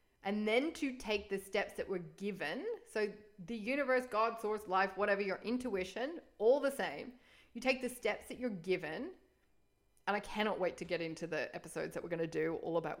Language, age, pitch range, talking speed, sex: English, 30-49, 185-245 Hz, 200 wpm, female